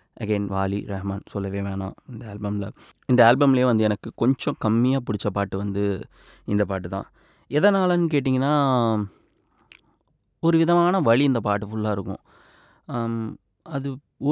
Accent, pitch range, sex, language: native, 100-130 Hz, male, Tamil